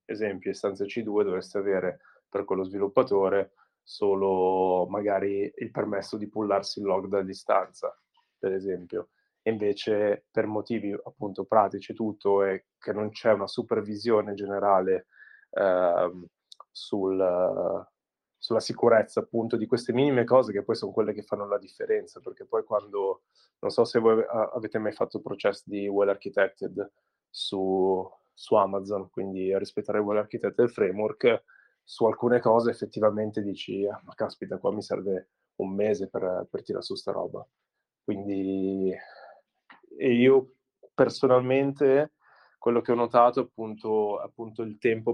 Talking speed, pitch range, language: 135 wpm, 100-115 Hz, Italian